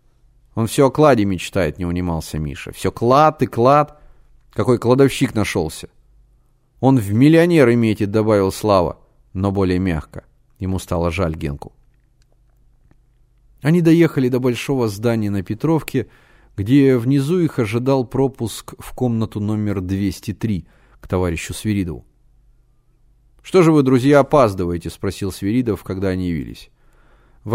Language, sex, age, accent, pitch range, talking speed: Russian, male, 30-49, native, 95-130 Hz, 125 wpm